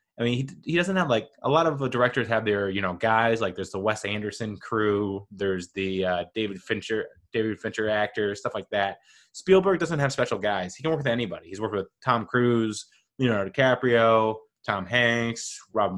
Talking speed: 200 wpm